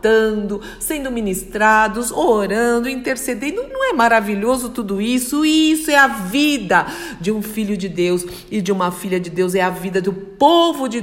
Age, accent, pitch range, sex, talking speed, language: 50-69, Brazilian, 185-255 Hz, female, 165 wpm, Portuguese